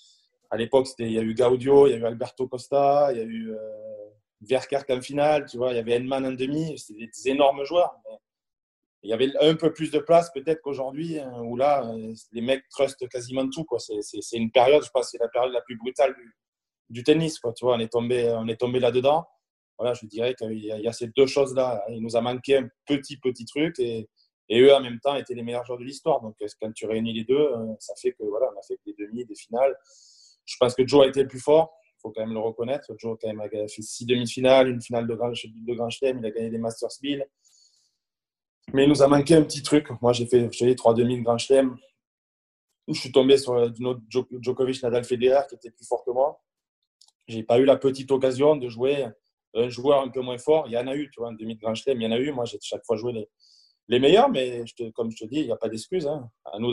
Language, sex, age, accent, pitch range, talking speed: French, male, 20-39, French, 115-140 Hz, 255 wpm